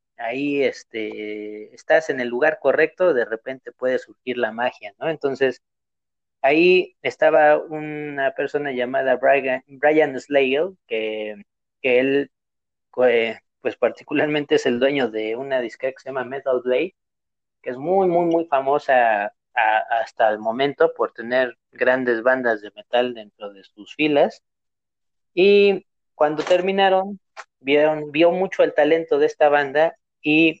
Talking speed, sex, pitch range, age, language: 140 wpm, male, 120-155 Hz, 30-49, Spanish